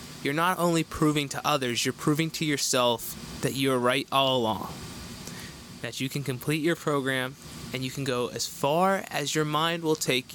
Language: English